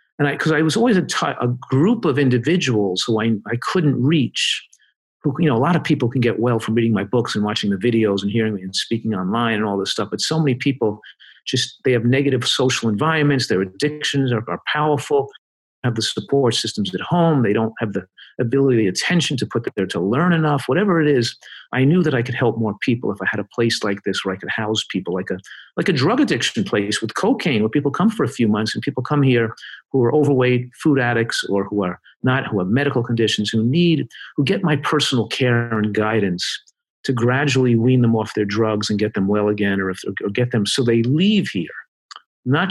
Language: English